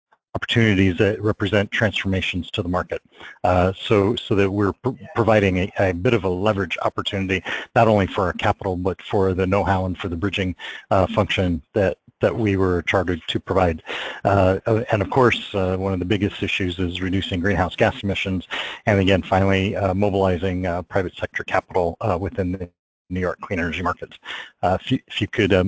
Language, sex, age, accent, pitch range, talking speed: English, male, 40-59, American, 95-105 Hz, 190 wpm